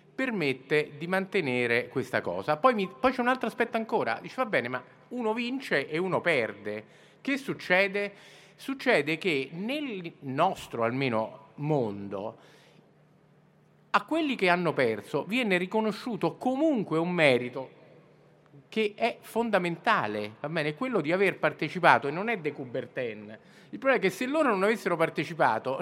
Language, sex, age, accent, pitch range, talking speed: Italian, male, 50-69, native, 140-210 Hz, 145 wpm